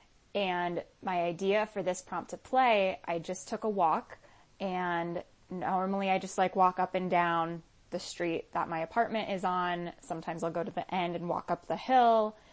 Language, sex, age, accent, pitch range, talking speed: English, female, 20-39, American, 170-200 Hz, 190 wpm